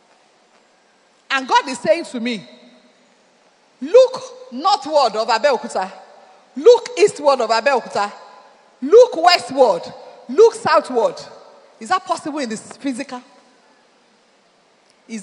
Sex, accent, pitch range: female, Nigerian, 225-310 Hz